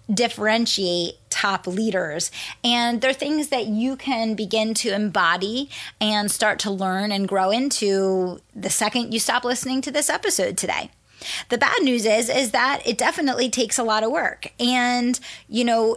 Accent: American